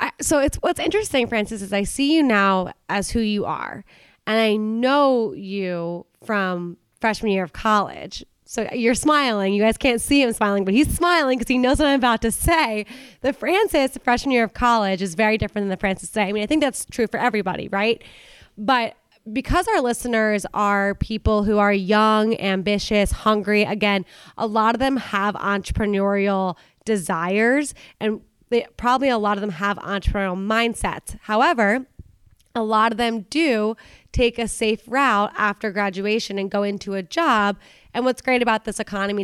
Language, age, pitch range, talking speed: English, 20-39, 200-245 Hz, 180 wpm